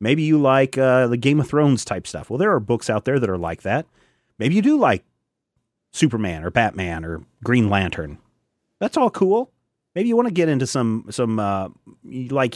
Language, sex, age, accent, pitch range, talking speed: English, male, 40-59, American, 110-135 Hz, 210 wpm